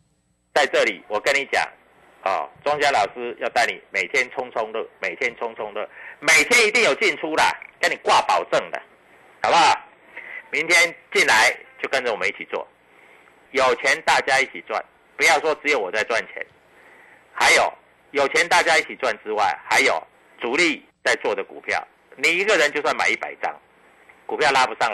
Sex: male